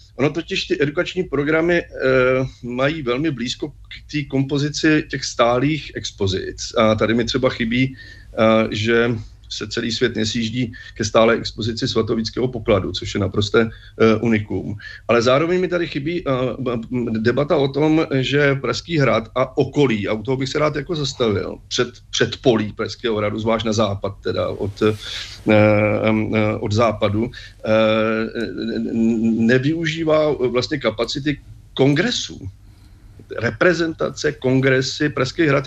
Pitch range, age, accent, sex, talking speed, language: 110-140 Hz, 40-59, native, male, 130 wpm, Czech